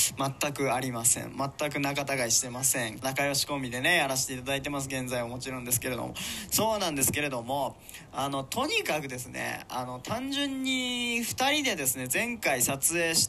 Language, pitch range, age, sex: Japanese, 135-215 Hz, 20-39, male